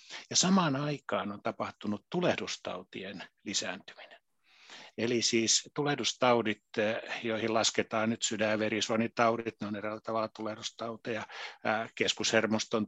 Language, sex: Finnish, male